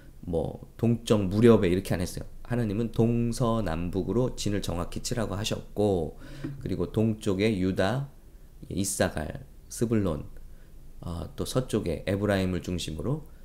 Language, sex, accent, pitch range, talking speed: English, male, Korean, 95-135 Hz, 105 wpm